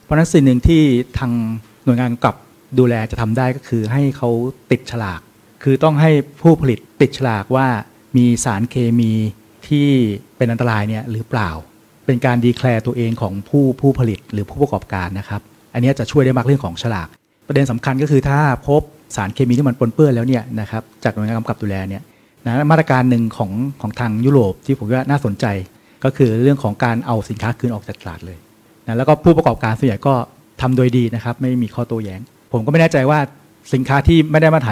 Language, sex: Thai, male